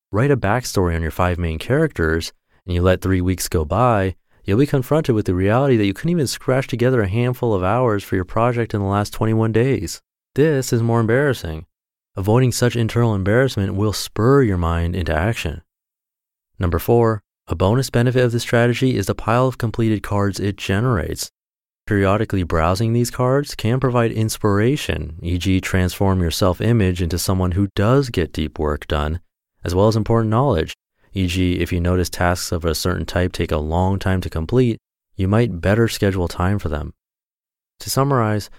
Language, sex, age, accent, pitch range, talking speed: English, male, 30-49, American, 90-120 Hz, 180 wpm